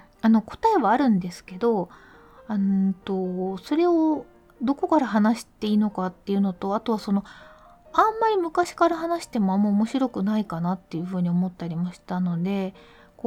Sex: female